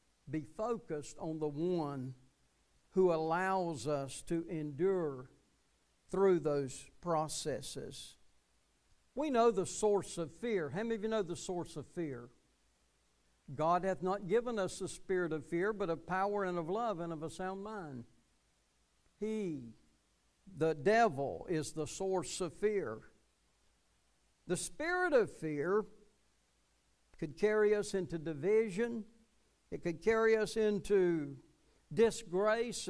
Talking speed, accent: 130 wpm, American